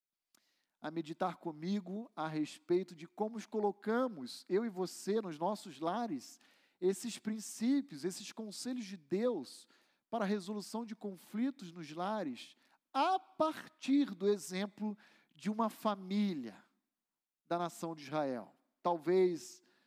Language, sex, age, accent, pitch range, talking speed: Portuguese, male, 40-59, Brazilian, 170-220 Hz, 120 wpm